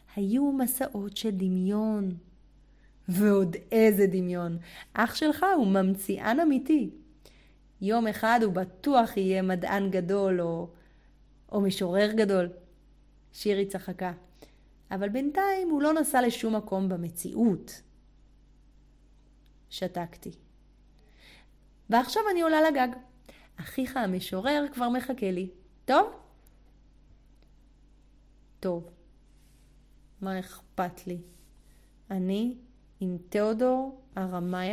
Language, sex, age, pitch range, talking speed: Hebrew, female, 30-49, 180-225 Hz, 90 wpm